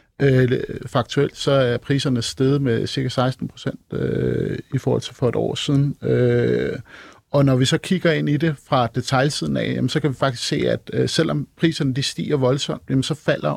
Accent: native